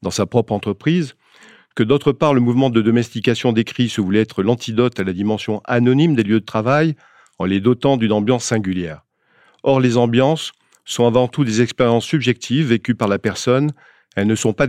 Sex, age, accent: male, 40-59, French